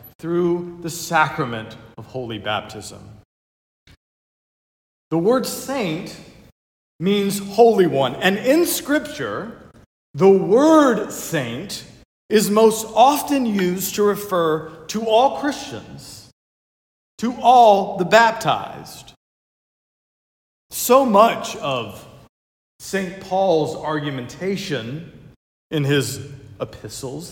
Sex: male